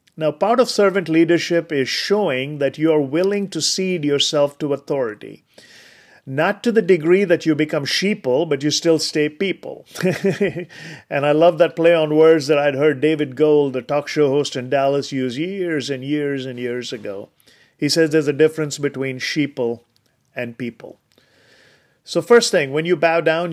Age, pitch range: 40-59, 140-170 Hz